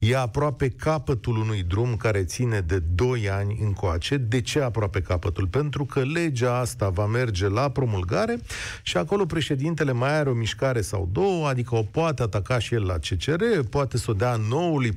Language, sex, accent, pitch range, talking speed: Romanian, male, native, 105-150 Hz, 180 wpm